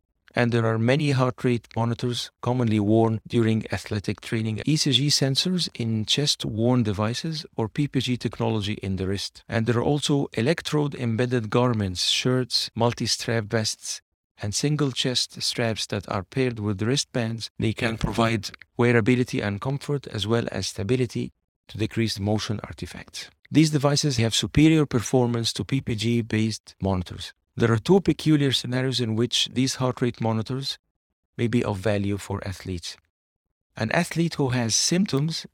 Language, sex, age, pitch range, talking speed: English, male, 40-59, 105-130 Hz, 150 wpm